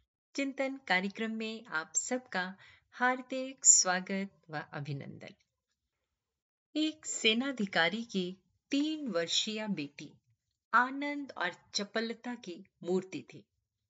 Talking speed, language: 50 wpm, Hindi